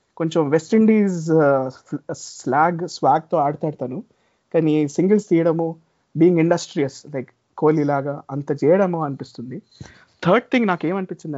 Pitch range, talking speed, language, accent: 150-195 Hz, 105 wpm, Telugu, native